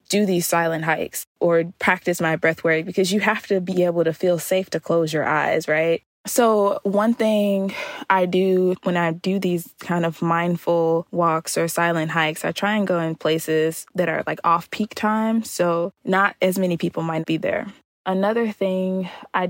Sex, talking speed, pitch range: female, 190 wpm, 165-185 Hz